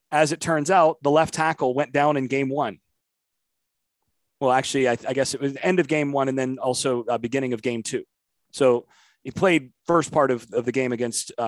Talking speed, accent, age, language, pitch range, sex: 220 wpm, American, 30-49, English, 130-170 Hz, male